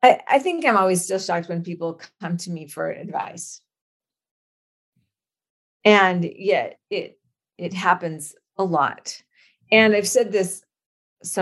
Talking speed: 130 wpm